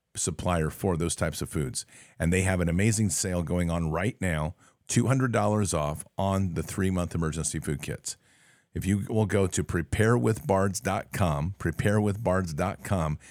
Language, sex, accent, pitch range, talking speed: English, male, American, 85-105 Hz, 140 wpm